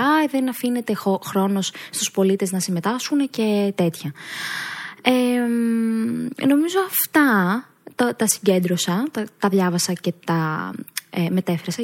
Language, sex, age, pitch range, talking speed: Greek, female, 20-39, 185-275 Hz, 95 wpm